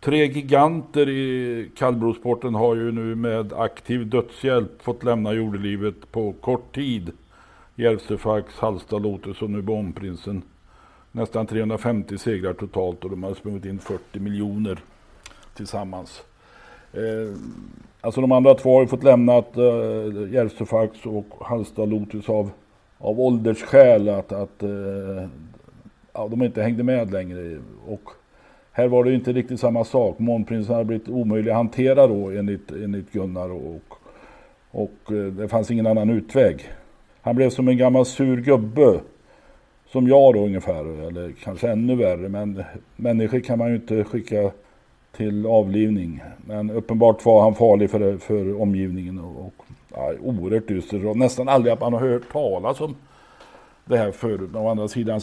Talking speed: 145 wpm